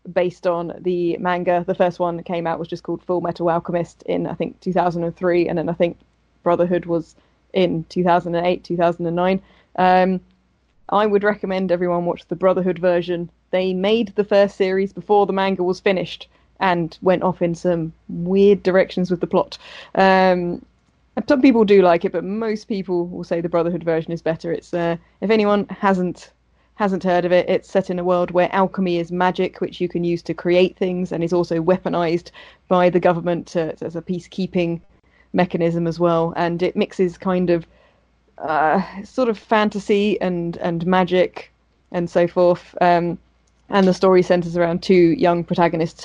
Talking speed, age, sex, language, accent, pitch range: 180 wpm, 20-39, female, English, British, 170-185 Hz